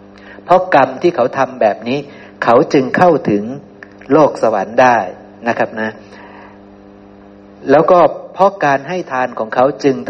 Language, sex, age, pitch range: Thai, male, 60-79, 100-145 Hz